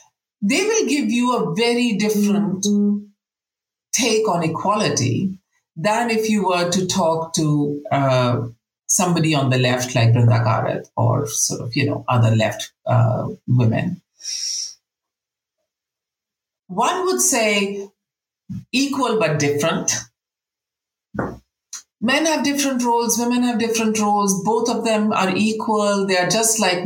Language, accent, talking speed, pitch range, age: English, Indian, 125 wpm, 160-220 Hz, 50-69